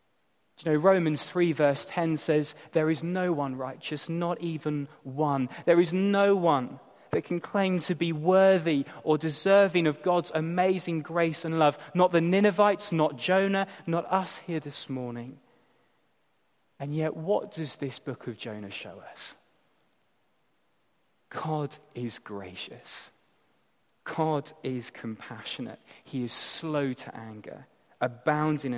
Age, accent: 20-39, British